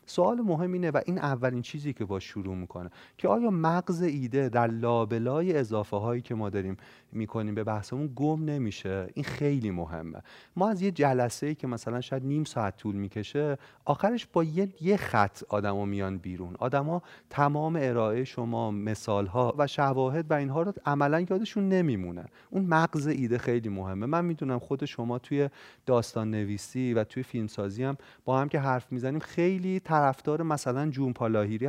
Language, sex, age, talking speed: Persian, male, 30-49, 165 wpm